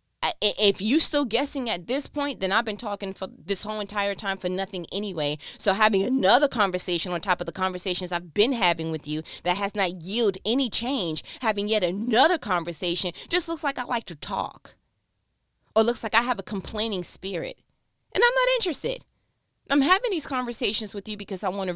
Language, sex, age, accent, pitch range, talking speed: English, female, 20-39, American, 180-250 Hz, 200 wpm